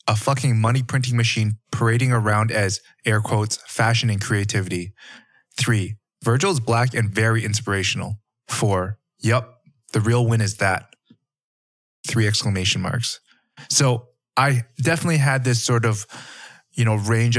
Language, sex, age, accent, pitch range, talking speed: English, male, 20-39, American, 105-120 Hz, 135 wpm